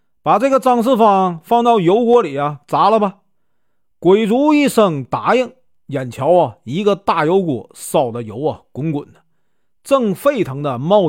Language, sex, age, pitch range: Chinese, male, 40-59, 140-220 Hz